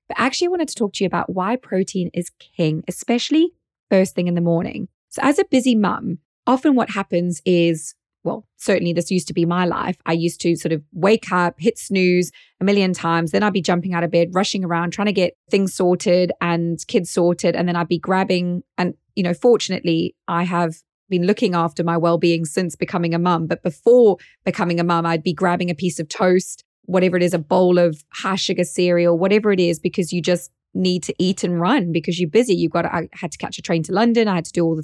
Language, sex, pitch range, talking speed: English, female, 175-210 Hz, 235 wpm